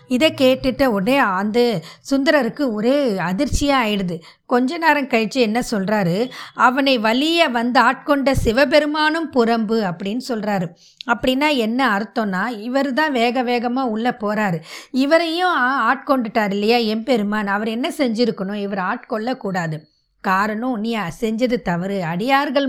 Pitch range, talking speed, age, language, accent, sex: 220-275 Hz, 110 wpm, 20-39, Tamil, native, female